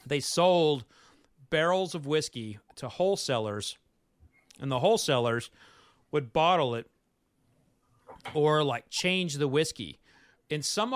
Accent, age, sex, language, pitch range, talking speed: American, 40-59, male, English, 145-190 Hz, 110 wpm